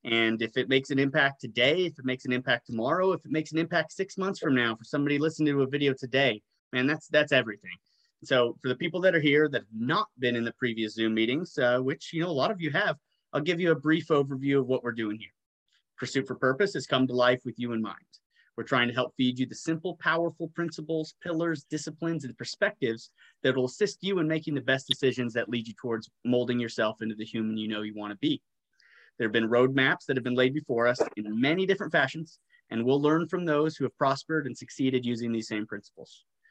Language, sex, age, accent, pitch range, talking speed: English, male, 30-49, American, 120-160 Hz, 240 wpm